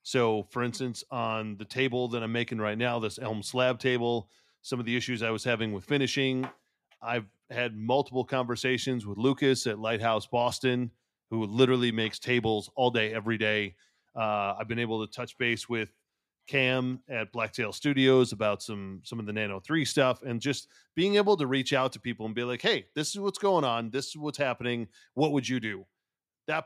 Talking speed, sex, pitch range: 200 wpm, male, 115-140 Hz